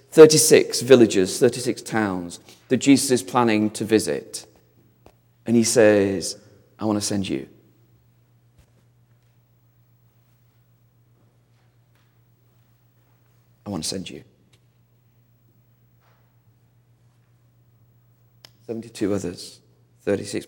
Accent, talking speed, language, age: British, 75 wpm, English, 40-59